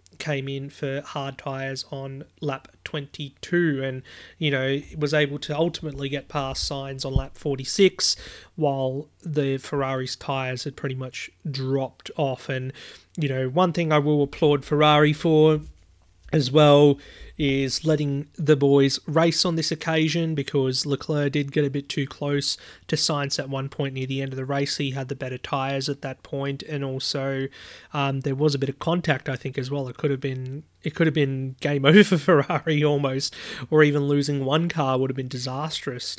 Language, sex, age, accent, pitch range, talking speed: English, male, 30-49, Australian, 135-155 Hz, 185 wpm